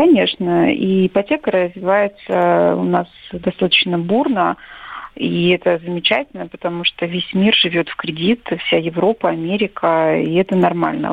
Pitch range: 170-205 Hz